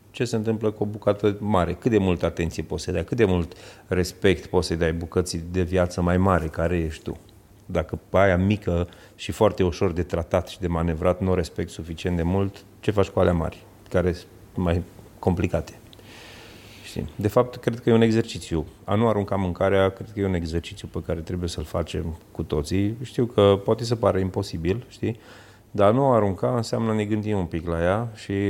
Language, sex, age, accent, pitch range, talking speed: Romanian, male, 30-49, native, 85-105 Hz, 205 wpm